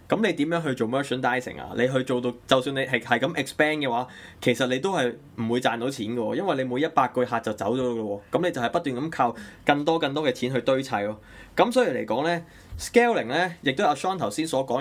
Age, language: 20-39, Chinese